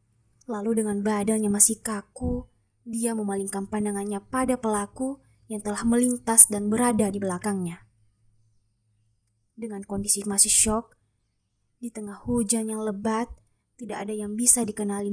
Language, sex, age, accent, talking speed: Indonesian, female, 20-39, native, 125 wpm